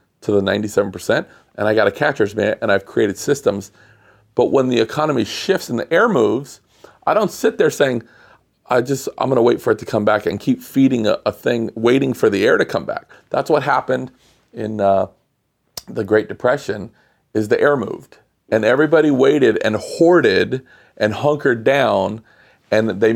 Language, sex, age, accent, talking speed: English, male, 40-59, American, 185 wpm